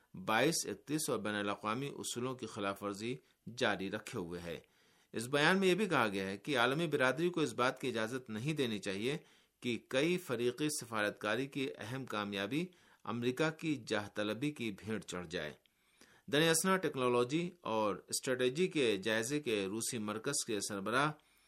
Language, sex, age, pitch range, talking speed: Urdu, male, 50-69, 105-150 Hz, 160 wpm